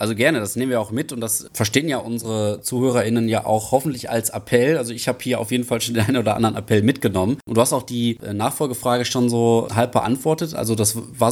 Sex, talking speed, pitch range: male, 240 wpm, 105-125 Hz